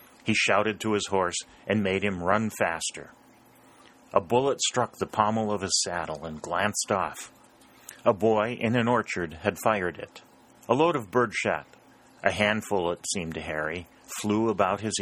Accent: American